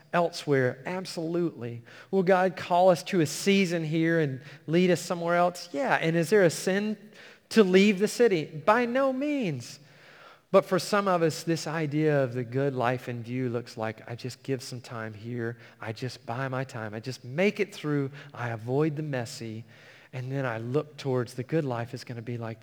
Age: 40-59